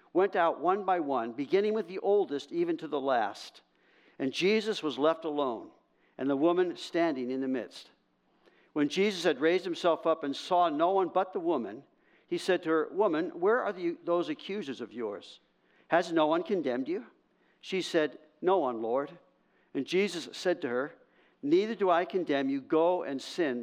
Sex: male